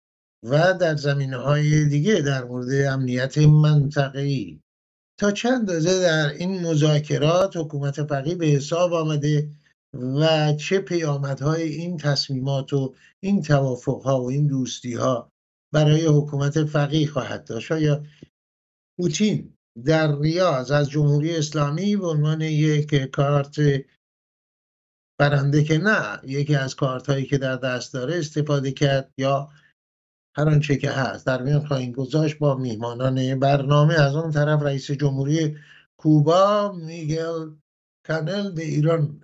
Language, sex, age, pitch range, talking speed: English, male, 50-69, 135-160 Hz, 125 wpm